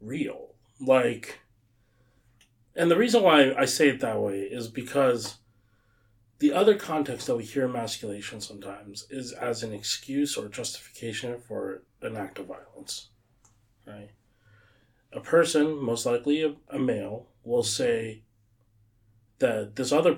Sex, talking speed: male, 130 wpm